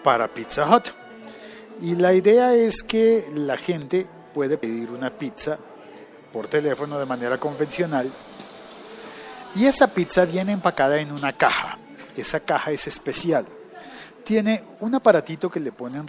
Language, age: Spanish, 40-59